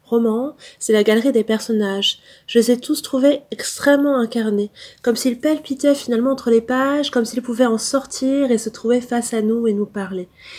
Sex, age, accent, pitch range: female, 20-39, French, 220-260 Hz